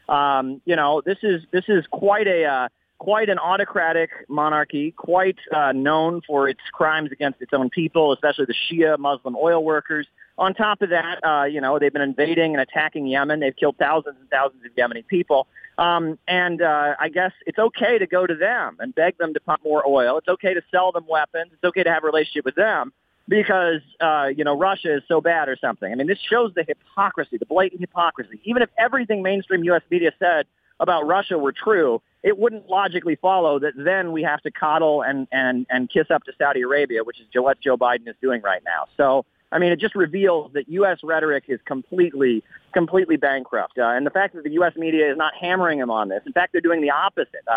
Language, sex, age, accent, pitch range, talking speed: English, male, 40-59, American, 145-180 Hz, 215 wpm